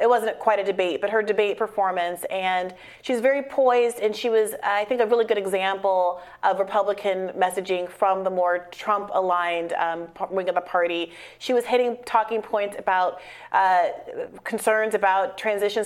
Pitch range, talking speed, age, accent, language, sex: 190-235 Hz, 165 wpm, 30-49, American, English, female